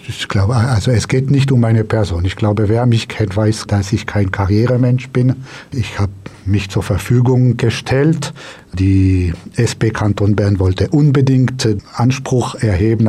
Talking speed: 155 wpm